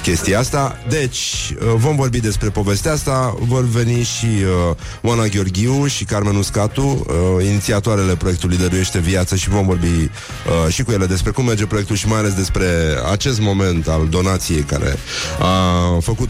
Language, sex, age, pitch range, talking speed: Romanian, male, 30-49, 90-115 Hz, 160 wpm